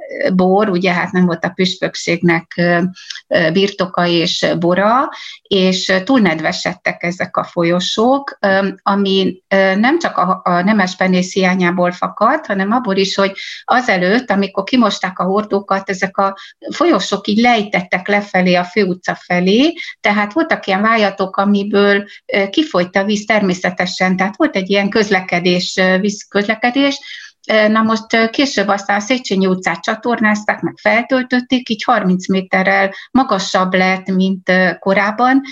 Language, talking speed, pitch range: Hungarian, 120 wpm, 185-220 Hz